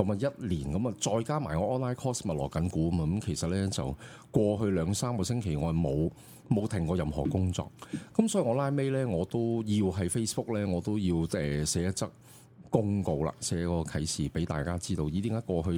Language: Chinese